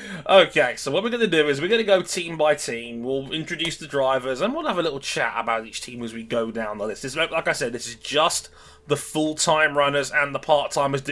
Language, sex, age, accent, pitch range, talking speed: English, male, 20-39, British, 125-160 Hz, 250 wpm